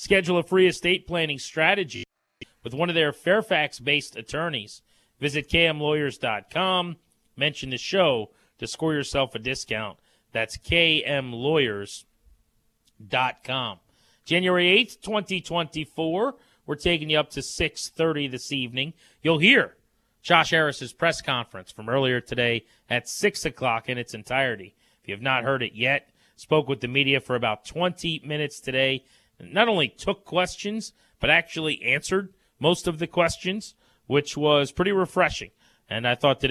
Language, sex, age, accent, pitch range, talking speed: English, male, 30-49, American, 125-165 Hz, 140 wpm